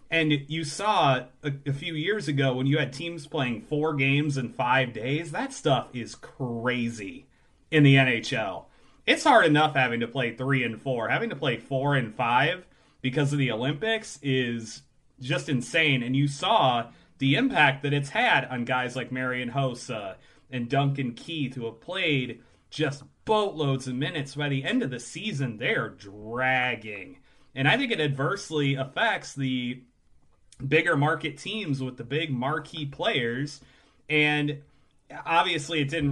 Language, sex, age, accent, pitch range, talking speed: English, male, 30-49, American, 130-150 Hz, 160 wpm